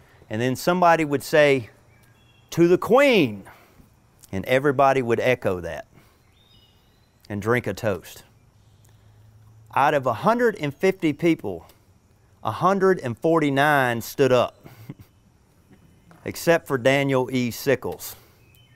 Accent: American